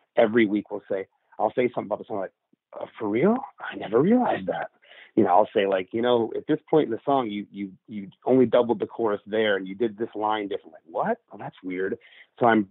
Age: 30-49